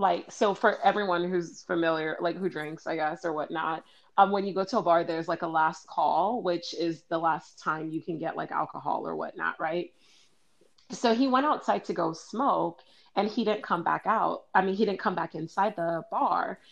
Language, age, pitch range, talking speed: English, 30-49, 170-200 Hz, 215 wpm